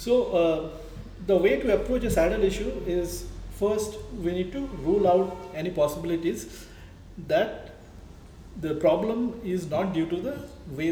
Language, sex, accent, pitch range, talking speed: English, male, Indian, 140-185 Hz, 150 wpm